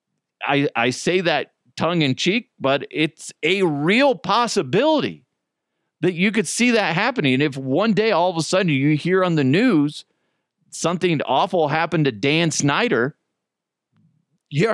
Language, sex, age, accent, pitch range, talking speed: English, male, 40-59, American, 110-170 Hz, 145 wpm